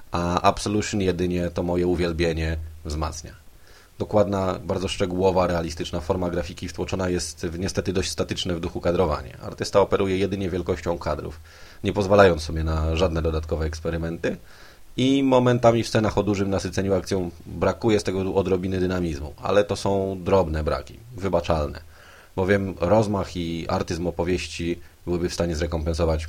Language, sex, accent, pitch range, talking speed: Polish, male, native, 85-95 Hz, 140 wpm